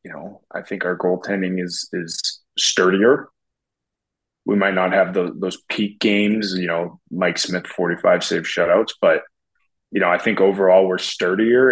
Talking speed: 165 wpm